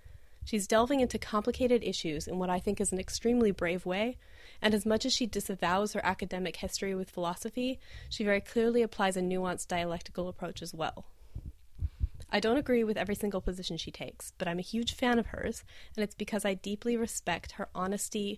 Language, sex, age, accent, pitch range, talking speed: English, female, 20-39, American, 180-240 Hz, 195 wpm